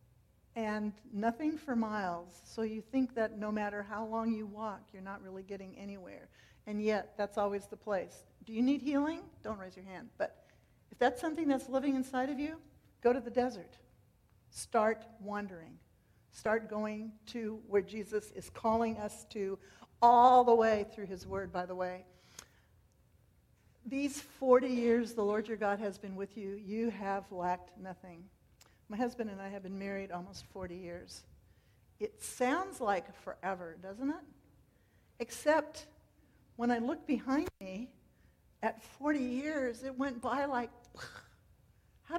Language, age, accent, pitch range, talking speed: English, 60-79, American, 200-255 Hz, 160 wpm